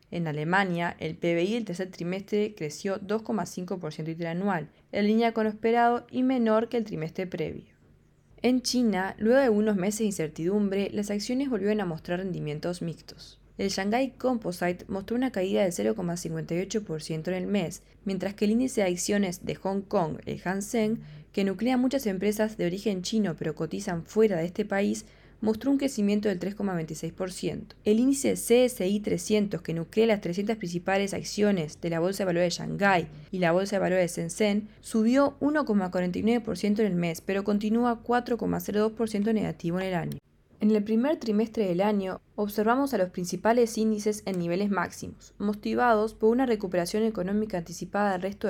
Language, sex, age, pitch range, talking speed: English, female, 20-39, 175-220 Hz, 165 wpm